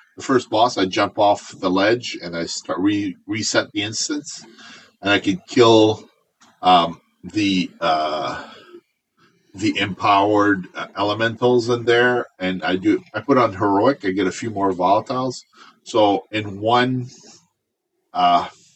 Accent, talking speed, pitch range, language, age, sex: American, 145 wpm, 100-155 Hz, English, 40-59, male